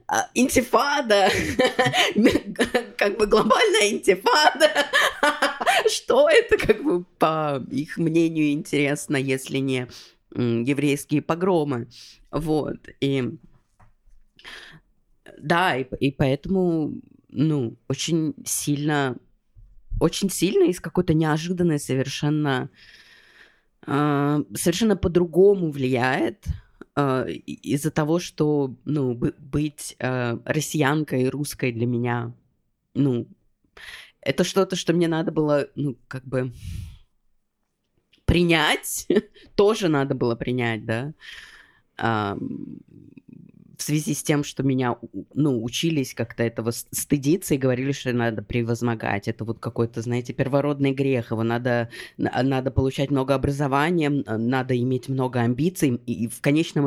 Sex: female